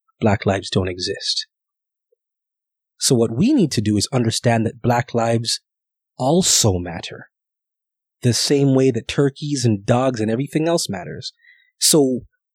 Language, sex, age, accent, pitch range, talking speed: English, male, 30-49, American, 115-165 Hz, 140 wpm